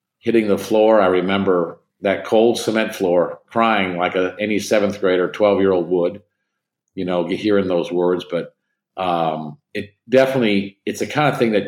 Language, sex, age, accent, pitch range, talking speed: English, male, 50-69, American, 95-125 Hz, 180 wpm